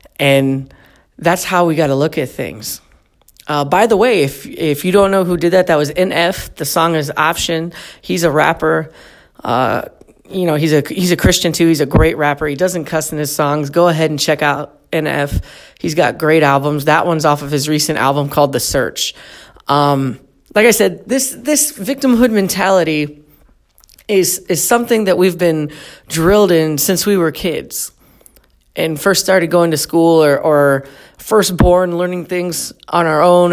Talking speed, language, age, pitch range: 190 wpm, English, 30-49, 150-185 Hz